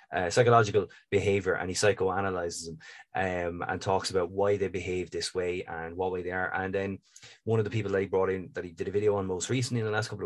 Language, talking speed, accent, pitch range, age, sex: English, 250 wpm, Irish, 90-115 Hz, 20-39, male